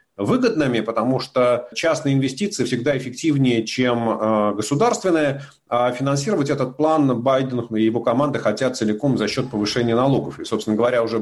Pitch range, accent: 115-145 Hz, native